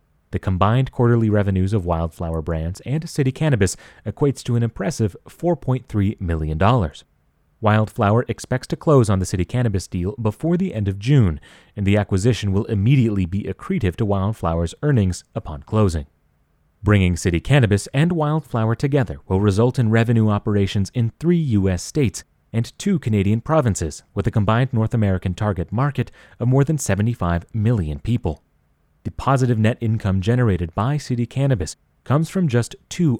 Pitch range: 95-130 Hz